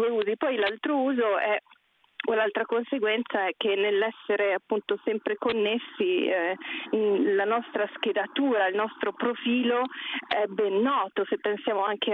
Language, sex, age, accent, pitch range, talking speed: Italian, female, 30-49, native, 190-250 Hz, 135 wpm